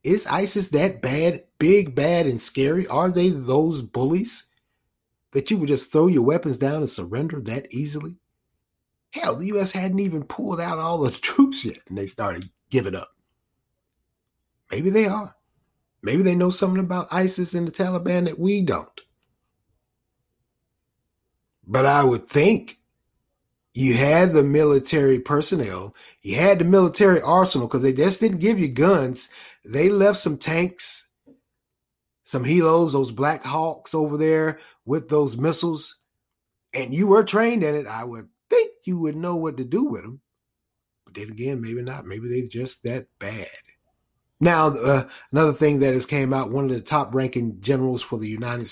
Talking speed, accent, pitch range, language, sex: 165 wpm, American, 130-180 Hz, English, male